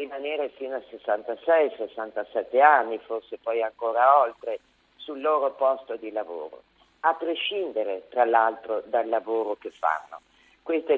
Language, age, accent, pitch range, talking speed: Italian, 50-69, native, 120-165 Hz, 130 wpm